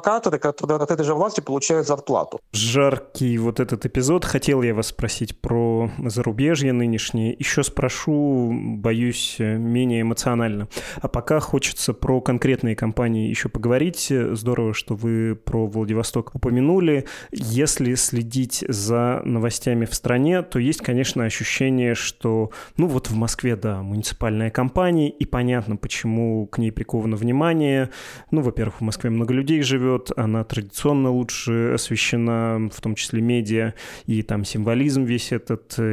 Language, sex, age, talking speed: Russian, male, 20-39, 135 wpm